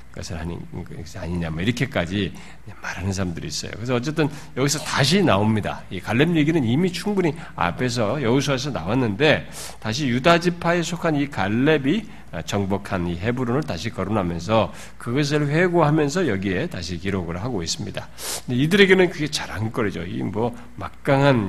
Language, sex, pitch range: Korean, male, 95-155 Hz